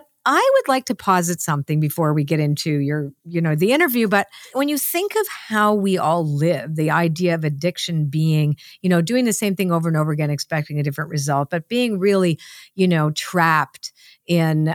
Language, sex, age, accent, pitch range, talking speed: English, female, 50-69, American, 150-215 Hz, 205 wpm